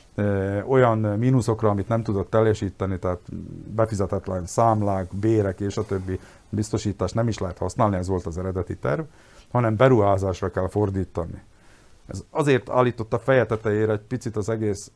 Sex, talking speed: male, 140 wpm